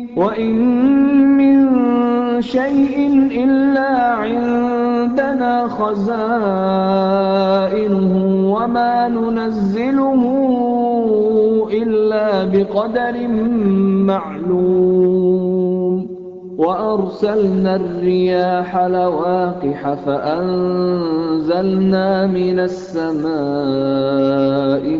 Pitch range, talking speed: 160-190 Hz, 40 wpm